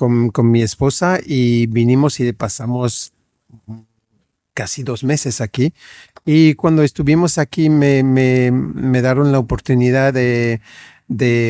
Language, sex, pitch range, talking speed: English, male, 115-135 Hz, 125 wpm